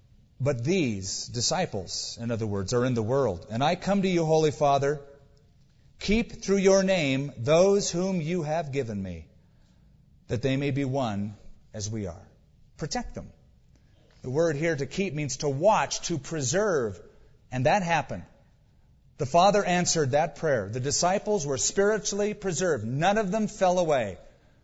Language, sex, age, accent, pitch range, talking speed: English, male, 50-69, American, 130-185 Hz, 160 wpm